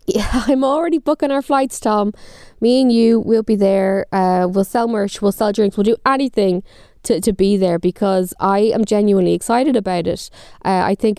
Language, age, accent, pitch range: English, 10-29, Irish, 185-230 Hz